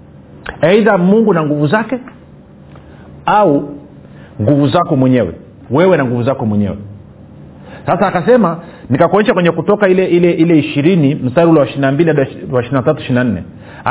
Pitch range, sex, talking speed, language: 140-195 Hz, male, 115 wpm, Swahili